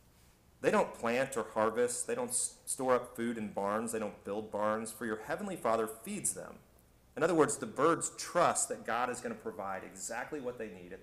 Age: 30-49